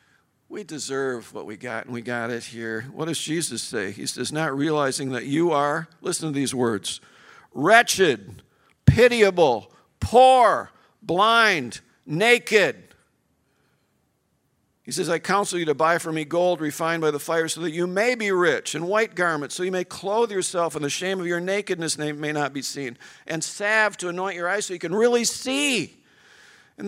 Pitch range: 160-240 Hz